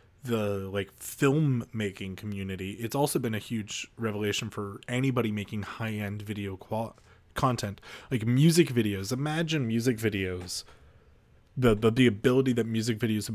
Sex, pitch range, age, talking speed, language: male, 105-120 Hz, 30-49, 135 wpm, English